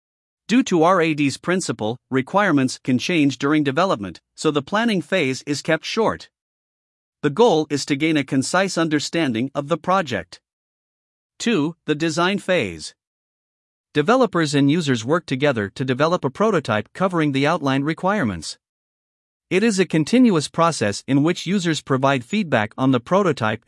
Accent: American